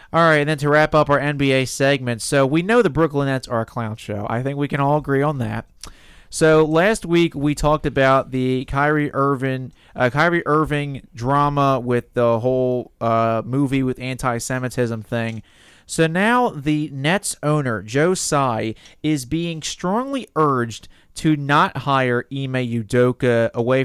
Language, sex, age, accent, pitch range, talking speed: English, male, 30-49, American, 110-140 Hz, 165 wpm